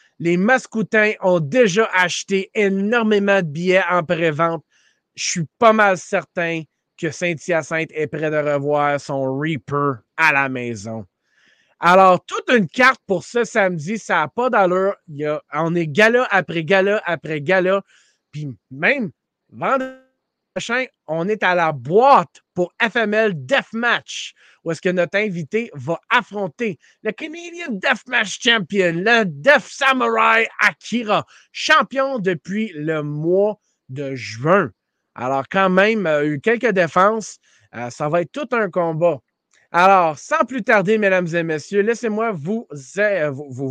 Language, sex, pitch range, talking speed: French, male, 160-220 Hz, 140 wpm